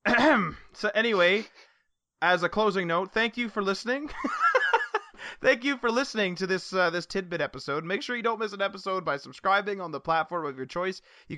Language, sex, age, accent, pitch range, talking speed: English, male, 30-49, American, 130-180 Hz, 190 wpm